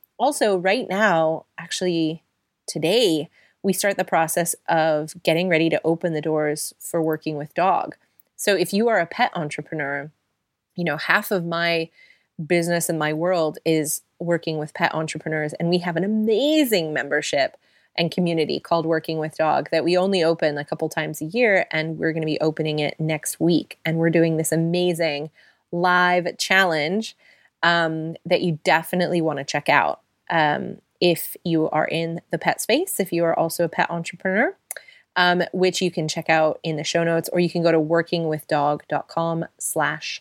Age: 30-49